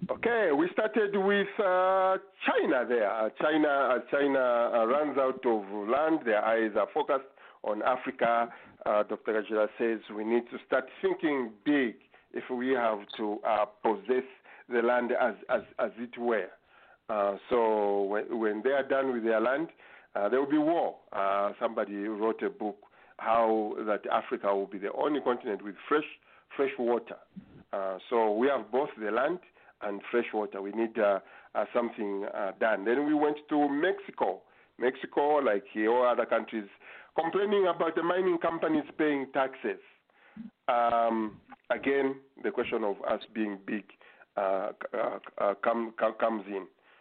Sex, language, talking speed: male, English, 160 wpm